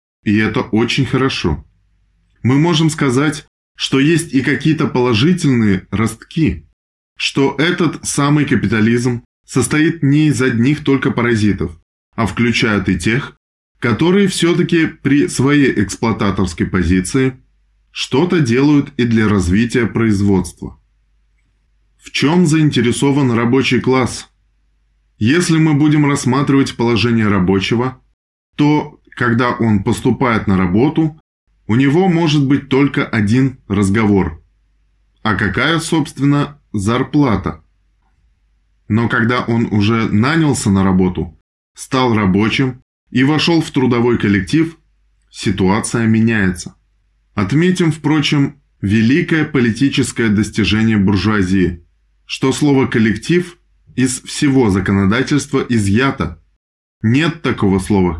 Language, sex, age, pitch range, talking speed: Russian, male, 20-39, 100-140 Hz, 100 wpm